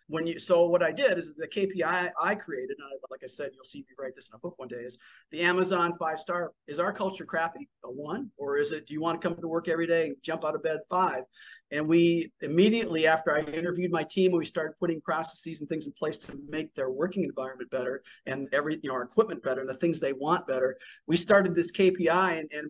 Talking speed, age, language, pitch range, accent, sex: 255 wpm, 50-69, English, 150-185 Hz, American, male